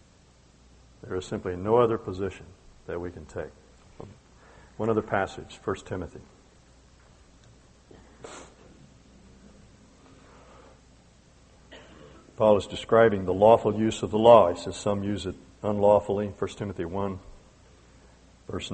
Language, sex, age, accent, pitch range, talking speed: English, male, 60-79, American, 95-115 Hz, 110 wpm